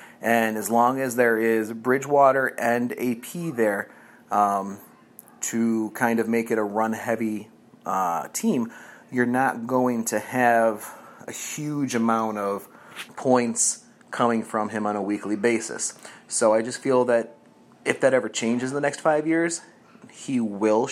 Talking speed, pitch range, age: 150 wpm, 110-130 Hz, 30-49